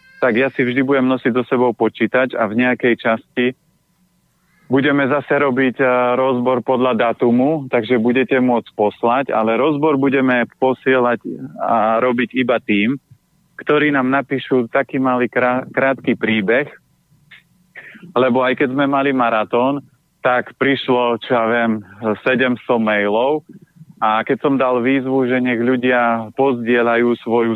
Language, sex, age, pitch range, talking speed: Slovak, male, 30-49, 115-135 Hz, 135 wpm